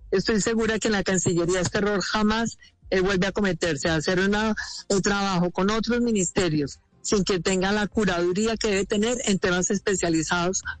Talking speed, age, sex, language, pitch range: 170 wpm, 50-69, female, Spanish, 185-225 Hz